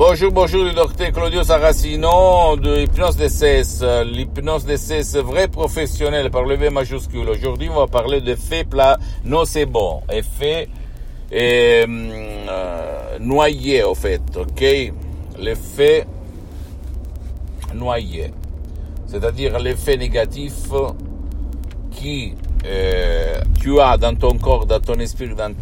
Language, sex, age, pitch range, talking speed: Italian, male, 50-69, 75-120 Hz, 120 wpm